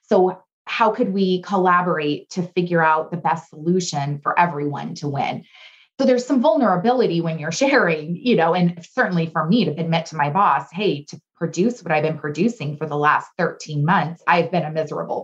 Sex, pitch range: female, 165-235 Hz